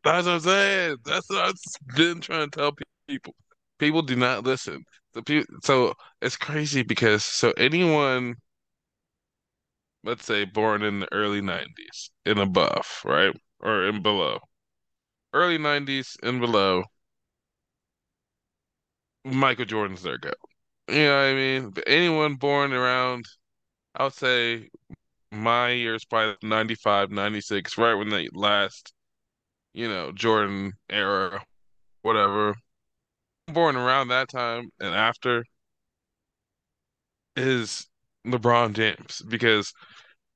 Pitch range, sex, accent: 110-140 Hz, male, American